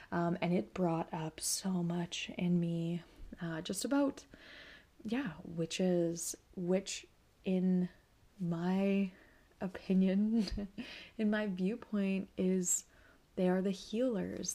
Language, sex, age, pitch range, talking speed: English, female, 20-39, 170-195 Hz, 110 wpm